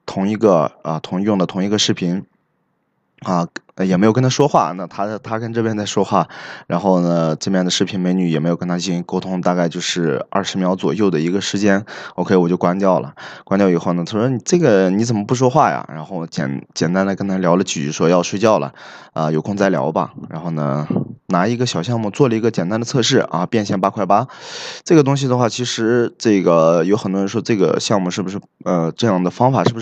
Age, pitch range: 20-39, 90-120 Hz